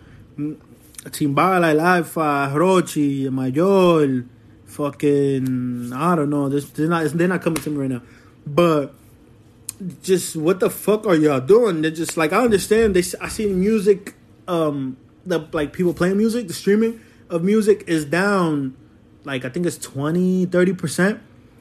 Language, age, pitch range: English, 20-39, 130-175 Hz